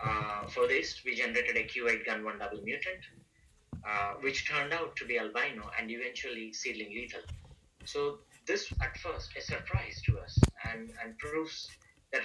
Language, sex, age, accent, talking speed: English, male, 30-49, Indian, 165 wpm